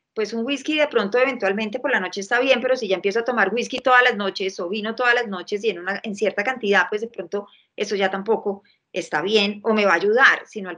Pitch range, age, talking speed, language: 200-250 Hz, 30-49, 260 wpm, Spanish